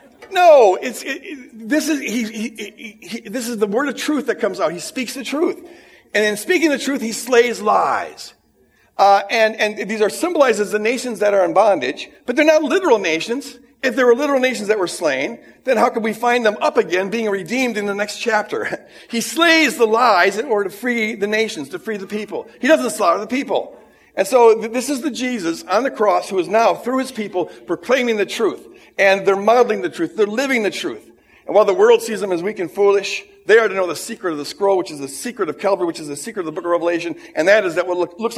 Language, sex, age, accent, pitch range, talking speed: English, male, 50-69, American, 195-265 Hz, 245 wpm